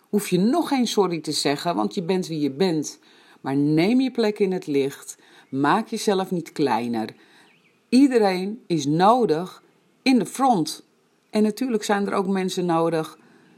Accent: Dutch